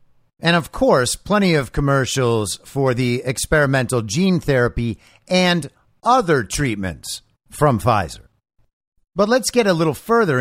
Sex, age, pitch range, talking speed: male, 50-69, 120-165 Hz, 125 wpm